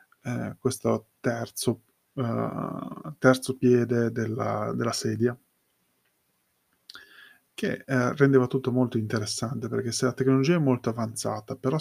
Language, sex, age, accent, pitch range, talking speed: Italian, male, 20-39, native, 115-130 Hz, 110 wpm